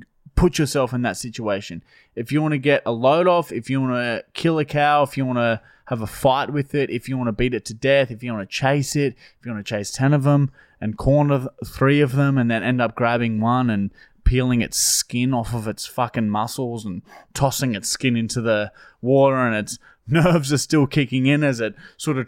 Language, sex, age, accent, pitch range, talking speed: English, male, 20-39, Australian, 120-150 Hz, 240 wpm